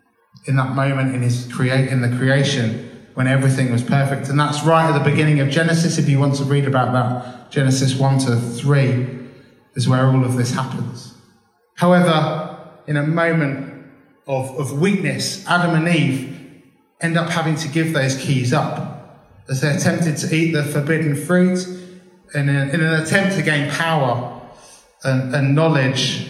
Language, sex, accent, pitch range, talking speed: English, male, British, 135-165 Hz, 165 wpm